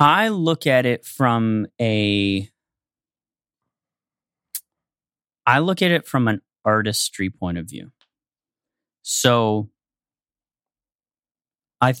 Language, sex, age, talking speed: English, male, 30-49, 90 wpm